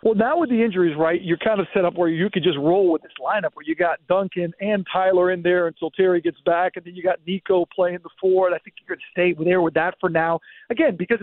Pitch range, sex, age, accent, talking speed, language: 175-225 Hz, male, 50-69, American, 285 wpm, English